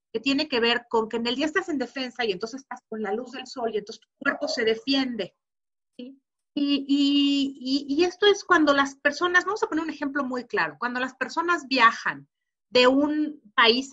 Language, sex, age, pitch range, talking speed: English, female, 40-59, 225-295 Hz, 210 wpm